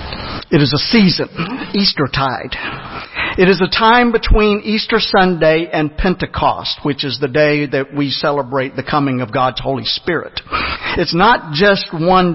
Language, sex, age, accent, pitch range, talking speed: English, male, 50-69, American, 135-185 Hz, 155 wpm